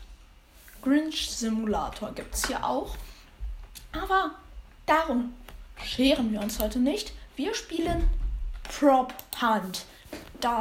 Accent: German